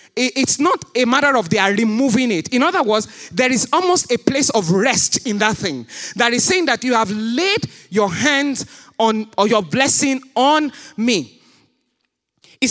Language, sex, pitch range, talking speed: English, male, 175-270 Hz, 180 wpm